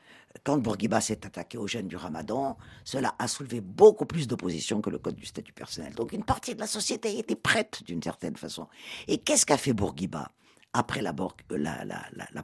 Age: 50-69